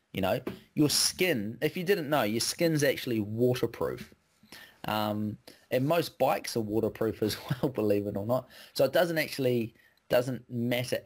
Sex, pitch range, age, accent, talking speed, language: male, 105-130 Hz, 30-49, Australian, 165 wpm, English